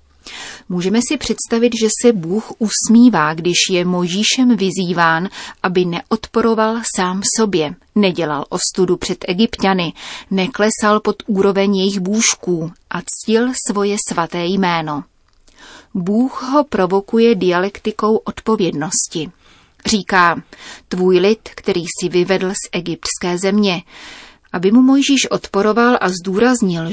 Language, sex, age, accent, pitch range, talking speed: Czech, female, 30-49, native, 175-220 Hz, 110 wpm